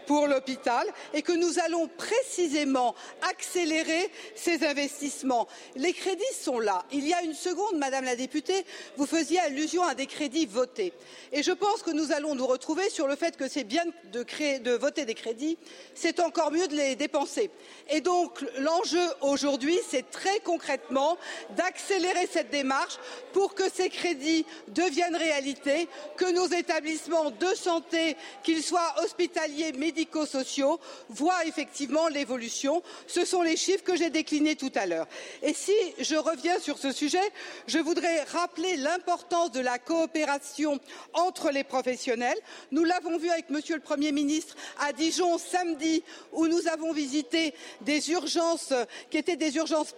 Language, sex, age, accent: French, female, 50-69, French